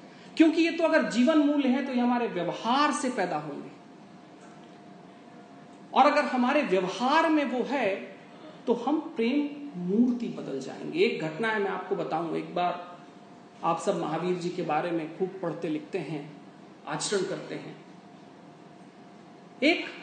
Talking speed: 150 wpm